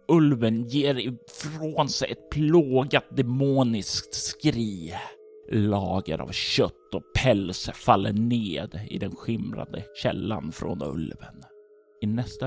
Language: Swedish